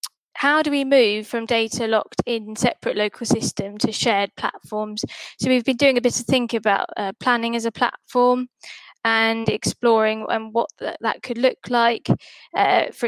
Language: English